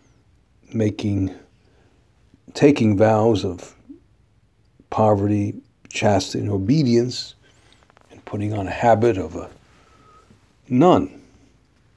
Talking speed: 80 wpm